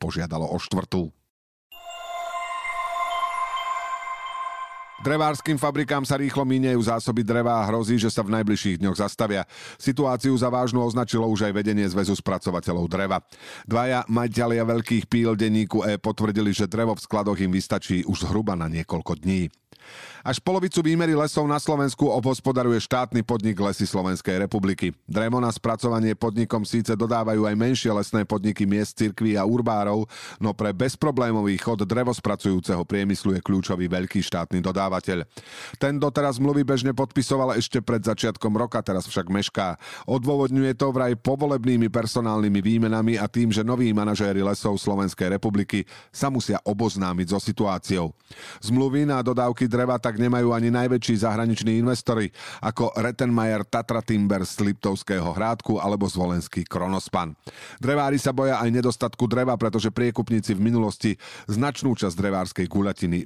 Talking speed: 140 wpm